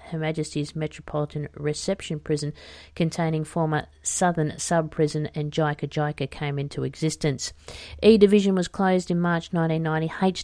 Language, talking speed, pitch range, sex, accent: English, 130 wpm, 145-170 Hz, female, Australian